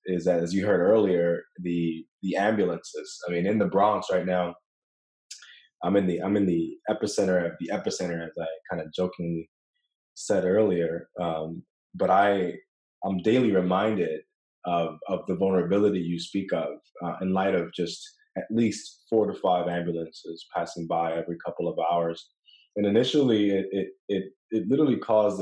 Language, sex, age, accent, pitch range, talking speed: English, male, 20-39, American, 85-105 Hz, 170 wpm